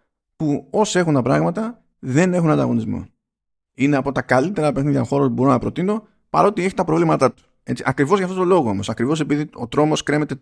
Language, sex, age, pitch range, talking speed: Greek, male, 30-49, 110-150 Hz, 195 wpm